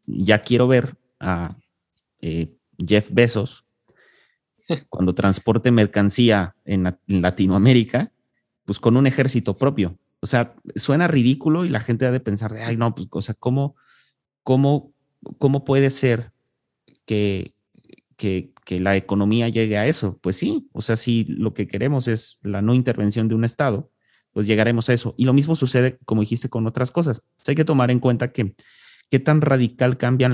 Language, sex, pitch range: Spanish, male, 105-130 Hz